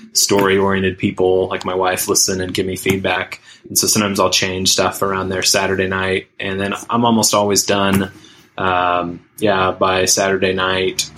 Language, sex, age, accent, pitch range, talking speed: English, male, 20-39, American, 90-100 Hz, 170 wpm